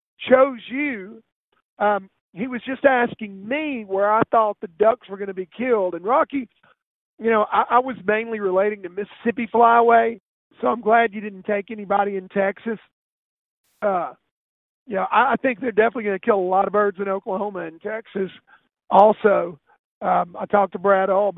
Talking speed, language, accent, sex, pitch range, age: 180 wpm, English, American, male, 200-225 Hz, 40-59